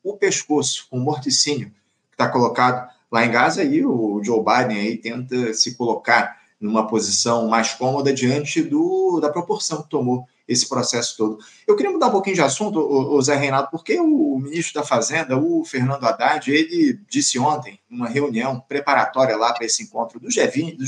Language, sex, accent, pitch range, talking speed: Portuguese, male, Brazilian, 125-170 Hz, 180 wpm